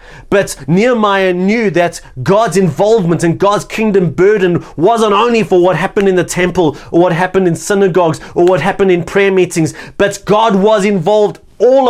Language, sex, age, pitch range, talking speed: English, male, 30-49, 140-190 Hz, 170 wpm